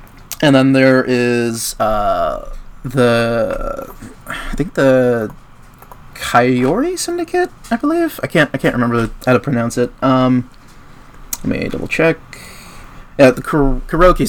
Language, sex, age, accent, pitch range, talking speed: English, male, 20-39, American, 115-135 Hz, 130 wpm